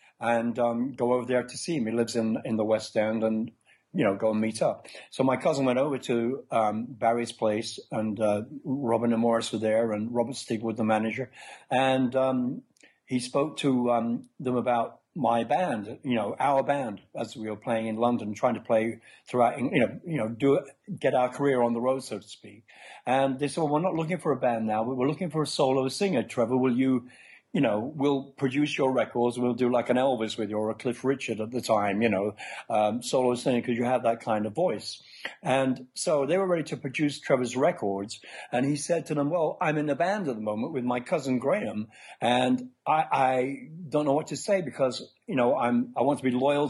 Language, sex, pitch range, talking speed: English, male, 115-140 Hz, 230 wpm